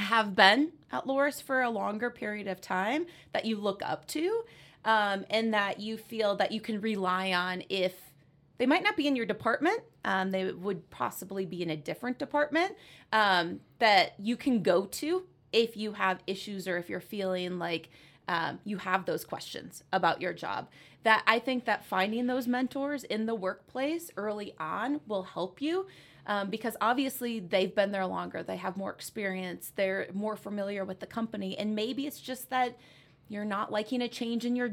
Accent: American